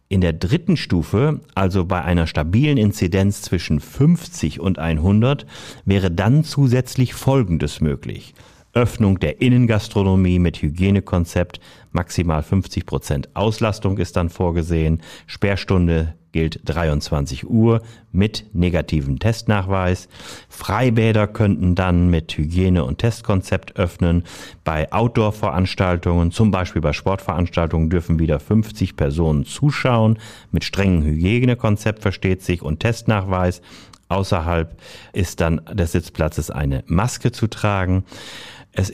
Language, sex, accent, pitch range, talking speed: German, male, German, 80-105 Hz, 110 wpm